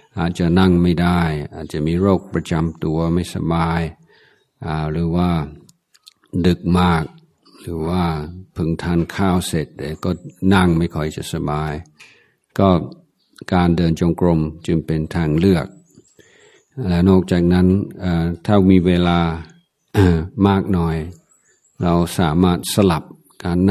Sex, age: male, 60-79